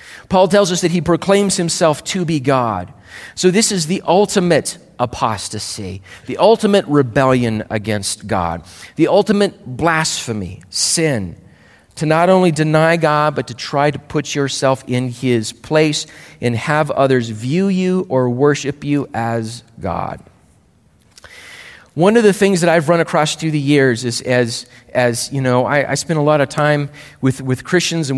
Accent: American